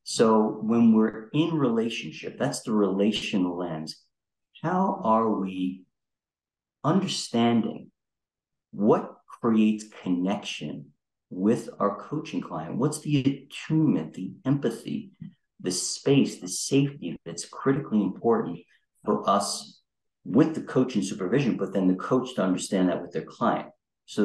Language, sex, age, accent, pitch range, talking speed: German, male, 50-69, American, 95-115 Hz, 120 wpm